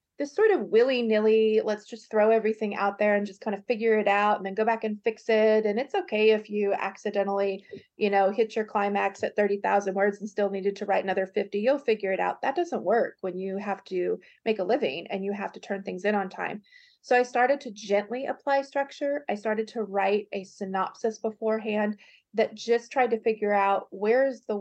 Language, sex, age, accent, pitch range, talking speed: English, female, 30-49, American, 200-230 Hz, 220 wpm